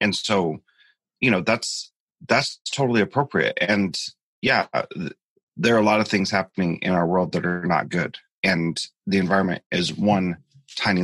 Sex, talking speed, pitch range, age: male, 165 wpm, 95-110 Hz, 30-49